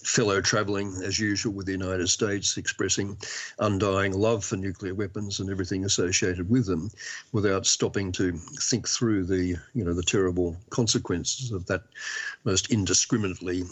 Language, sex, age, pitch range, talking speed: English, male, 50-69, 95-115 Hz, 150 wpm